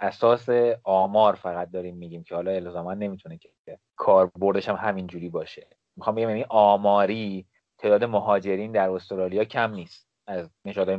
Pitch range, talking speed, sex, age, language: 95-115 Hz, 145 wpm, male, 30-49, Persian